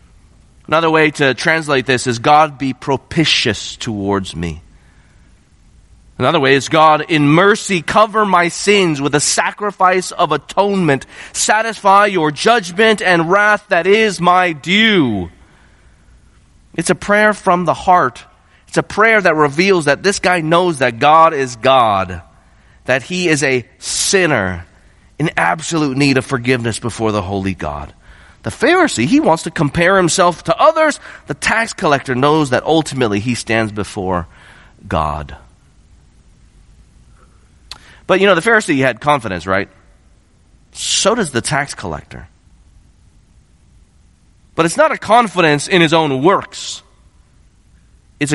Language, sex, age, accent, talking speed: English, male, 30-49, American, 135 wpm